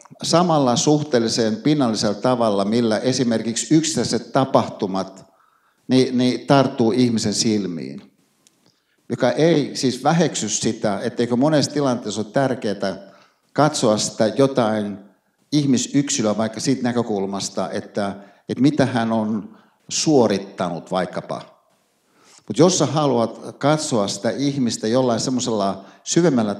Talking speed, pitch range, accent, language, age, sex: 105 wpm, 110-140 Hz, native, Finnish, 60-79, male